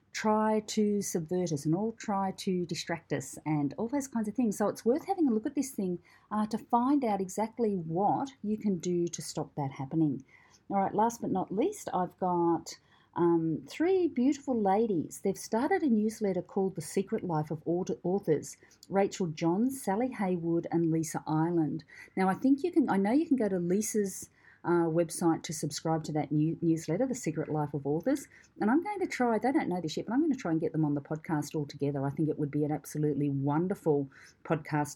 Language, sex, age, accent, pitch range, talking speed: English, female, 40-59, Australian, 155-220 Hz, 210 wpm